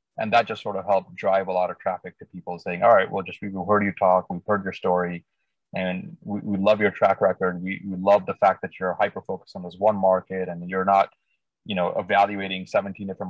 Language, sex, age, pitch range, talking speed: English, male, 20-39, 90-105 Hz, 245 wpm